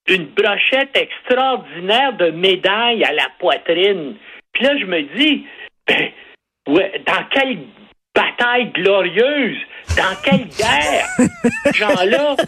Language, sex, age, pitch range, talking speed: French, male, 60-79, 195-310 Hz, 115 wpm